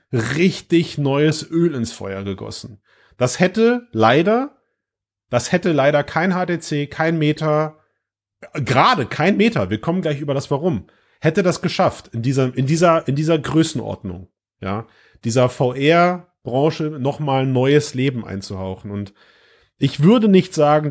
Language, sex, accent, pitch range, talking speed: German, male, German, 105-155 Hz, 140 wpm